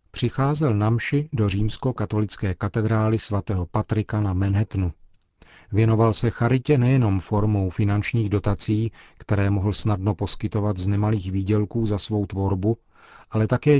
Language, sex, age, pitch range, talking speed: Czech, male, 40-59, 100-115 Hz, 120 wpm